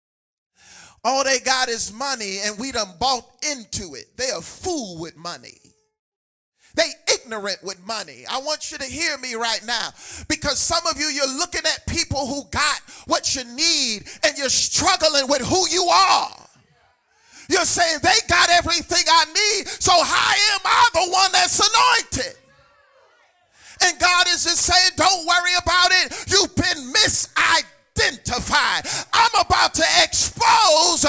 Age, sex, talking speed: 40-59, male, 155 wpm